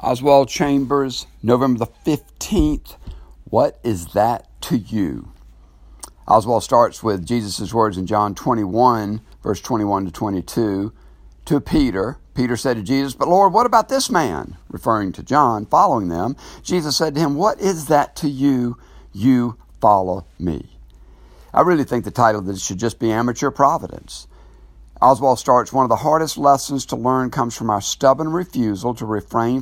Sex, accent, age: male, American, 60-79